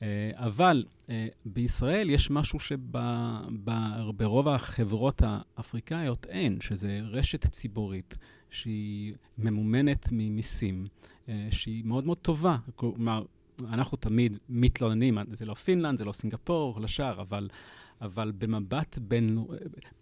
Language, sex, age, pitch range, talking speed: Hebrew, male, 40-59, 105-125 Hz, 110 wpm